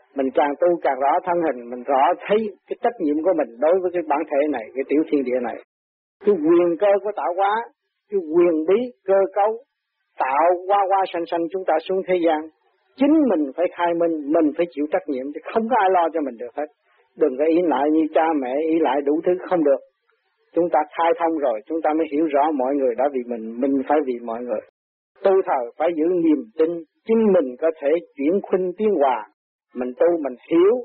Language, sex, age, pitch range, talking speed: Vietnamese, male, 40-59, 155-205 Hz, 230 wpm